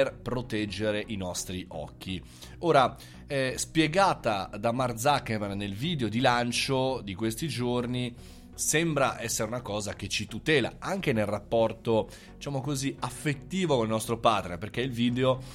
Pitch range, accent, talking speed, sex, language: 105-130 Hz, native, 140 wpm, male, Italian